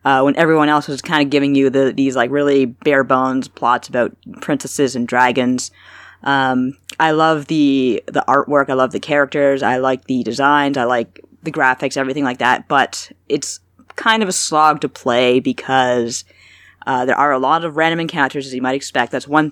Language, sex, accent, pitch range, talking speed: English, female, American, 130-155 Hz, 195 wpm